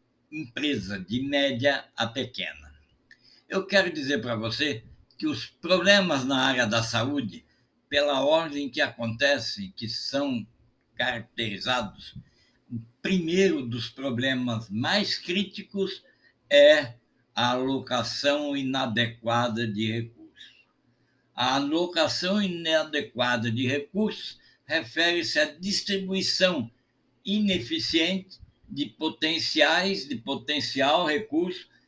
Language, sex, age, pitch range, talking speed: Portuguese, male, 60-79, 120-175 Hz, 95 wpm